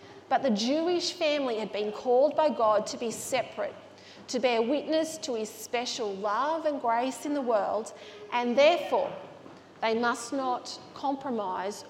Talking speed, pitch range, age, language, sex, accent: 150 wpm, 230-310 Hz, 40-59, English, female, Australian